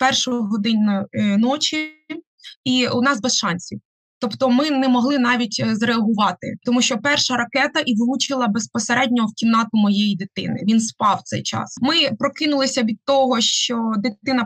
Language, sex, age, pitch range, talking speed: Ukrainian, female, 20-39, 215-255 Hz, 145 wpm